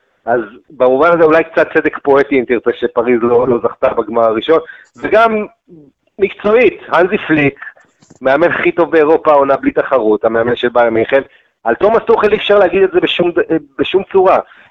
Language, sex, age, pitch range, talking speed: Hebrew, male, 40-59, 130-175 Hz, 160 wpm